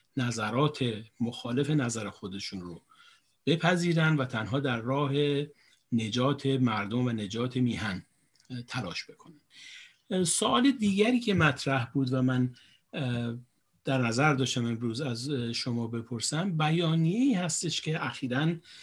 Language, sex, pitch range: Persian, male, 120-145 Hz